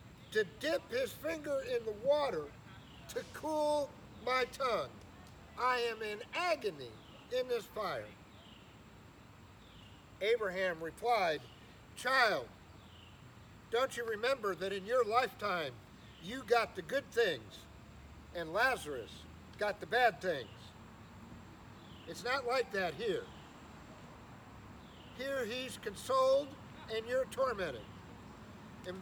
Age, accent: 60-79, American